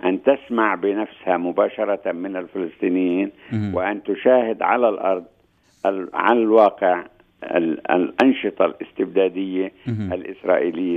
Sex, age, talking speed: male, 60-79, 80 wpm